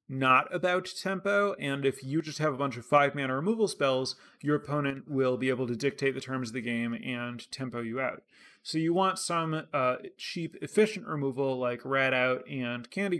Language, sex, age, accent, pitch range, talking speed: English, male, 30-49, American, 130-160 Hz, 195 wpm